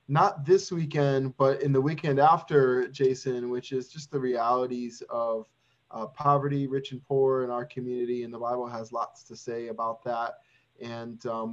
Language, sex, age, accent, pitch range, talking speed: English, male, 20-39, American, 125-150 Hz, 175 wpm